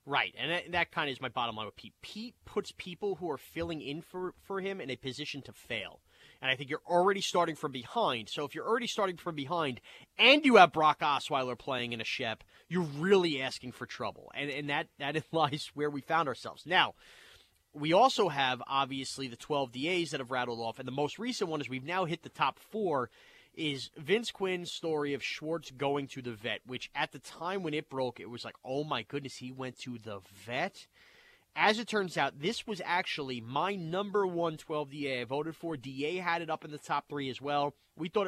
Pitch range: 135-180 Hz